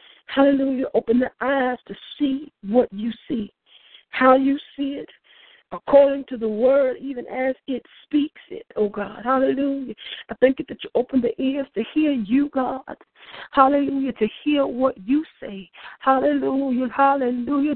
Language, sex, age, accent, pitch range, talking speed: English, female, 50-69, American, 225-280 Hz, 150 wpm